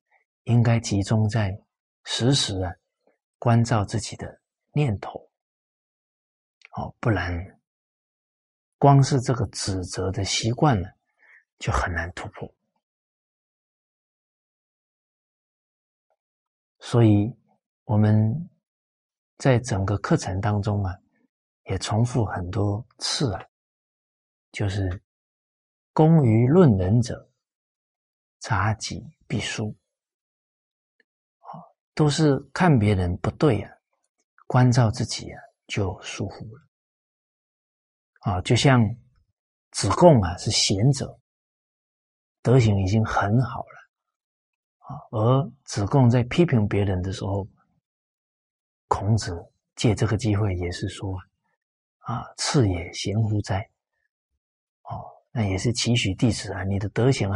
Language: Chinese